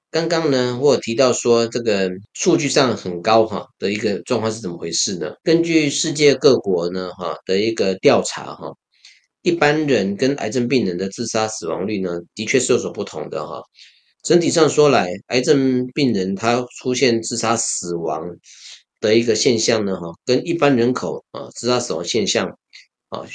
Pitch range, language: 100-135 Hz, Chinese